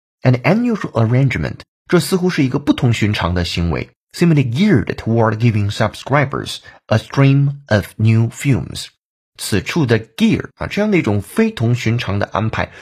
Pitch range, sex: 95-135 Hz, male